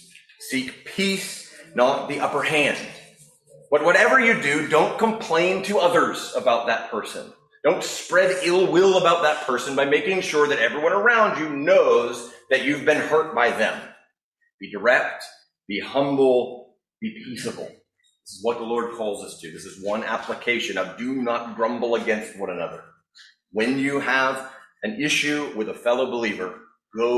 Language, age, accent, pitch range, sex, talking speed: English, 30-49, American, 120-165 Hz, male, 160 wpm